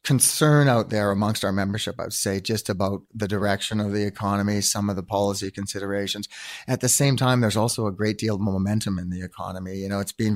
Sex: male